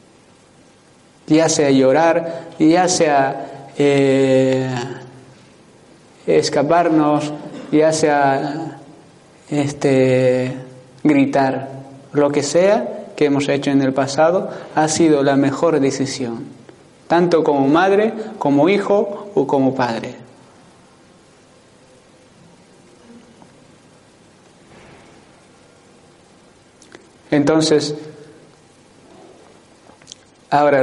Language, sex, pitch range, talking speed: Spanish, male, 140-160 Hz, 65 wpm